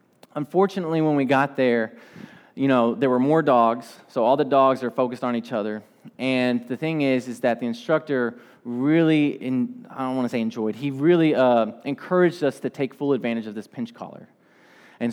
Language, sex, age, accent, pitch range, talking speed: English, male, 20-39, American, 130-185 Hz, 190 wpm